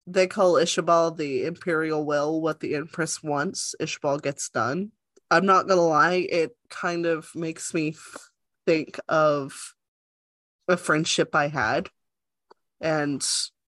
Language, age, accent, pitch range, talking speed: English, 20-39, American, 155-185 Hz, 125 wpm